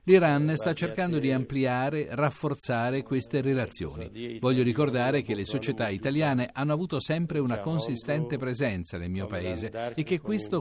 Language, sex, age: Italian, male, 50-69